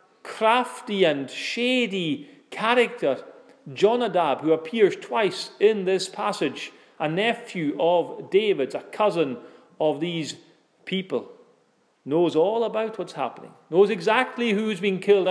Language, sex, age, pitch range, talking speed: English, male, 40-59, 135-195 Hz, 120 wpm